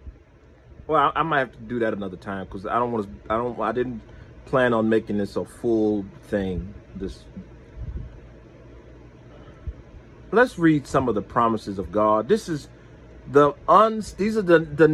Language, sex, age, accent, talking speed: English, male, 40-59, American, 170 wpm